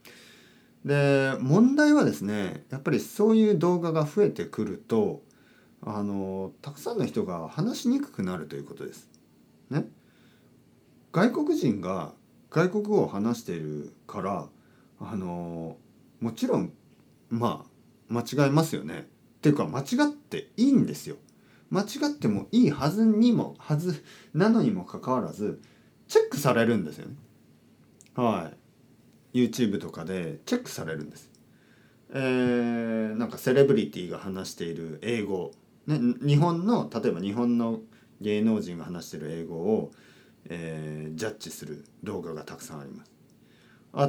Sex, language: male, Japanese